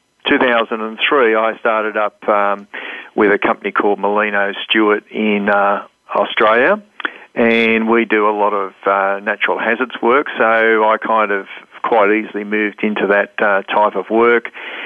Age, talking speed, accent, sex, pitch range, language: 50-69, 150 wpm, Australian, male, 105-115 Hz, English